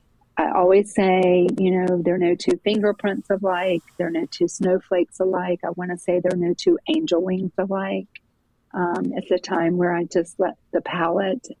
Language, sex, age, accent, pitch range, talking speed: English, female, 40-59, American, 175-200 Hz, 195 wpm